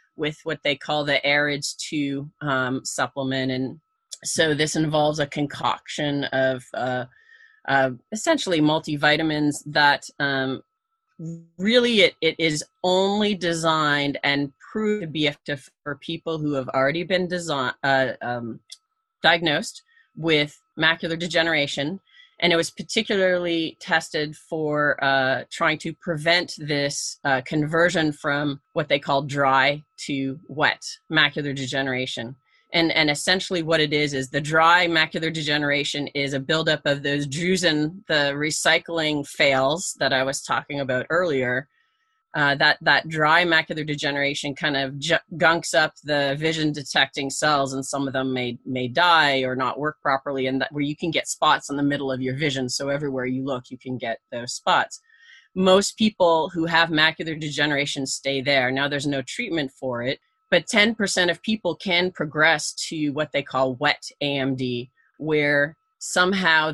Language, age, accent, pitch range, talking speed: English, 30-49, American, 140-165 Hz, 155 wpm